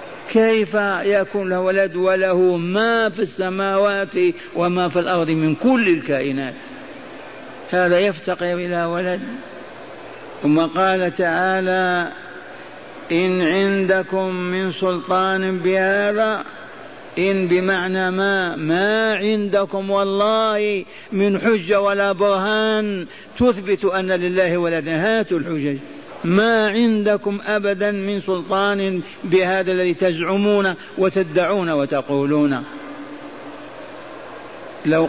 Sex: male